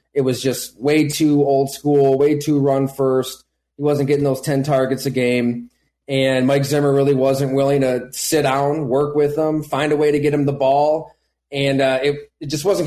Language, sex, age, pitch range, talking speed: English, male, 30-49, 135-155 Hz, 210 wpm